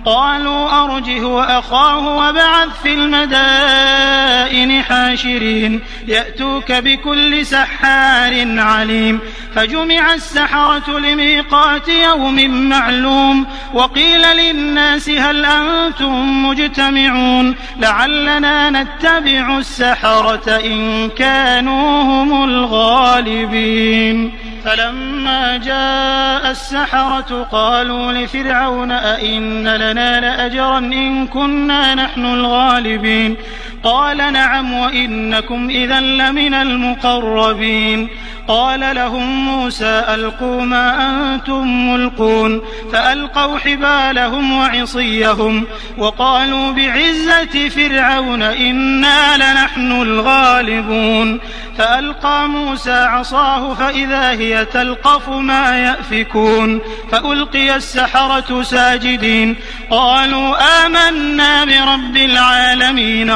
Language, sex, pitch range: Arabic, male, 230-275 Hz